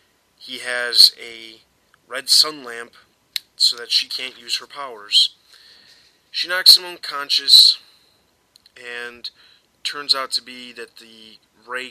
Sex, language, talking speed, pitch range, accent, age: male, English, 125 wpm, 110-125 Hz, American, 30-49